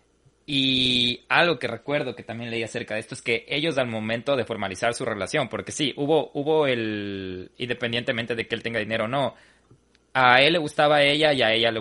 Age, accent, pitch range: 20-39, Mexican, 110-140 Hz